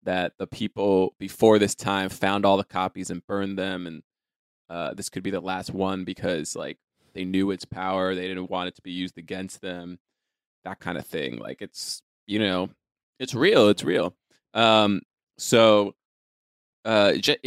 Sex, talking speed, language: male, 175 wpm, English